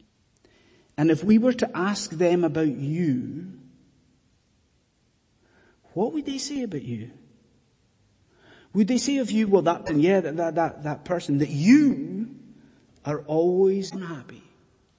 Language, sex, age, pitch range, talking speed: English, male, 30-49, 175-275 Hz, 130 wpm